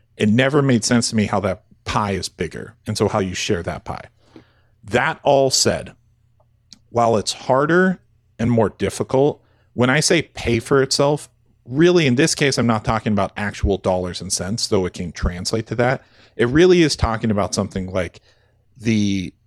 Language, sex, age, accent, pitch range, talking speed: English, male, 40-59, American, 100-120 Hz, 180 wpm